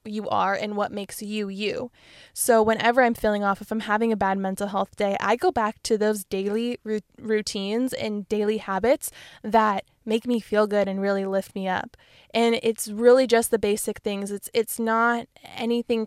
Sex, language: female, English